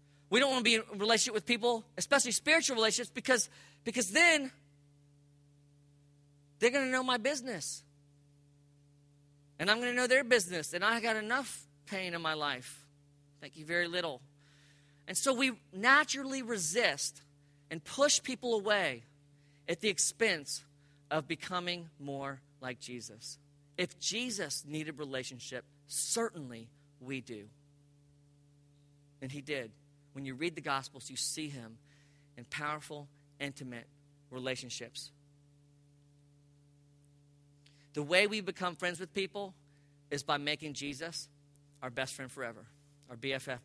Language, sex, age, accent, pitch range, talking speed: English, male, 40-59, American, 145-205 Hz, 135 wpm